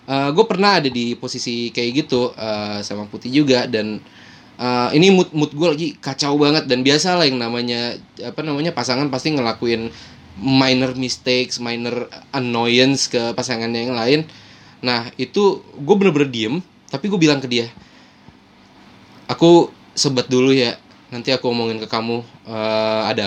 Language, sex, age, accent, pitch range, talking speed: Indonesian, male, 20-39, native, 120-150 Hz, 150 wpm